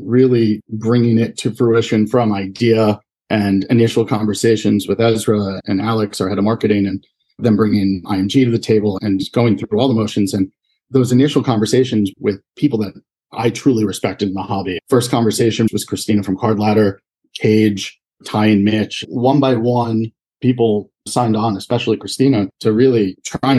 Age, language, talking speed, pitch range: 40-59, English, 170 wpm, 105-125 Hz